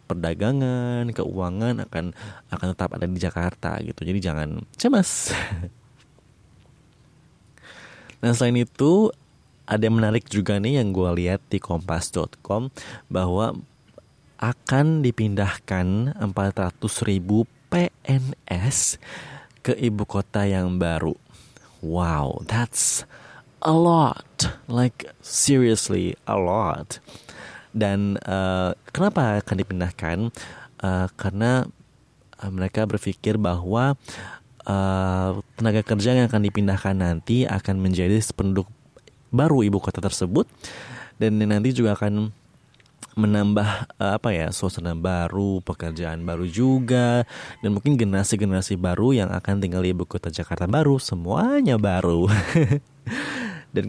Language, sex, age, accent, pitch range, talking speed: Indonesian, male, 30-49, native, 95-120 Hz, 110 wpm